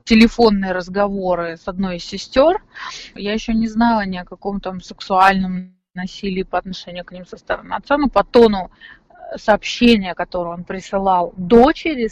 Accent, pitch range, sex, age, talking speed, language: native, 185-220 Hz, female, 30-49, 155 wpm, Russian